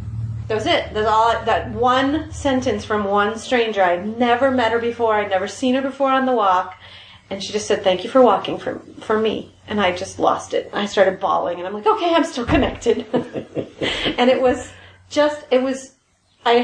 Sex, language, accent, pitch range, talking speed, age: female, English, American, 180-230 Hz, 200 wpm, 30-49